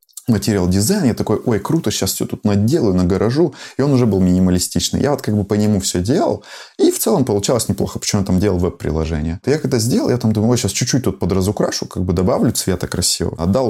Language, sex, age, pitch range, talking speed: Russian, male, 20-39, 90-110 Hz, 220 wpm